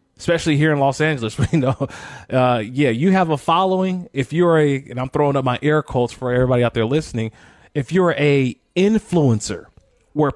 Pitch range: 125-175 Hz